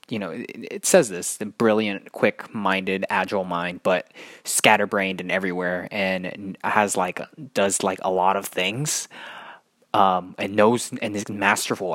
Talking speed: 145 wpm